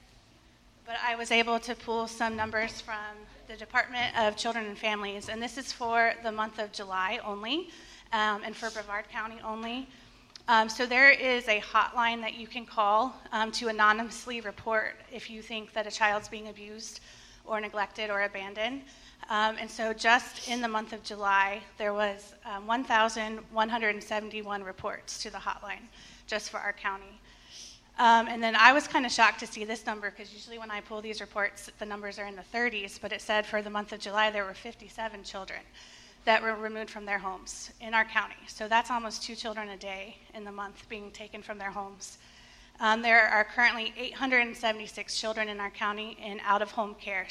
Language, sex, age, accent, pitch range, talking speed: English, female, 30-49, American, 210-230 Hz, 195 wpm